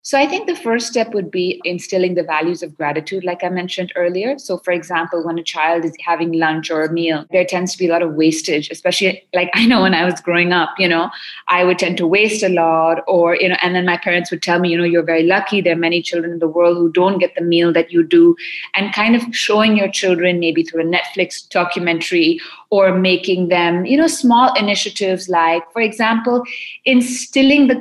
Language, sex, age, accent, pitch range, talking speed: English, female, 30-49, Indian, 175-220 Hz, 235 wpm